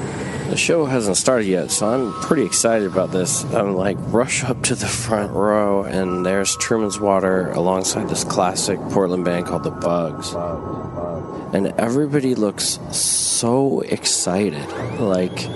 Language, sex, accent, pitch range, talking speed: English, male, American, 90-100 Hz, 145 wpm